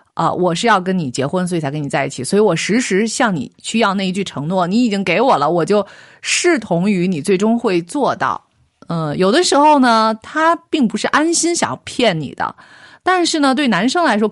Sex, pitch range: female, 175-250 Hz